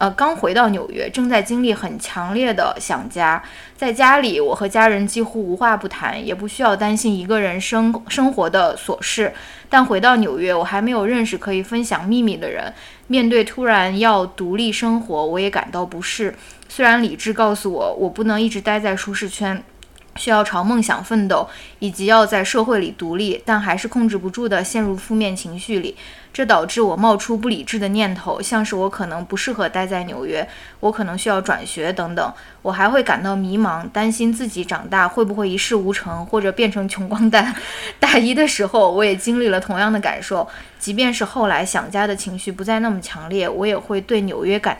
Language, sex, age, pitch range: Chinese, female, 10-29, 195-230 Hz